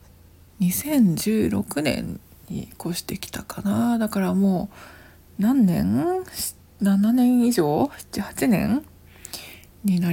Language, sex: Japanese, female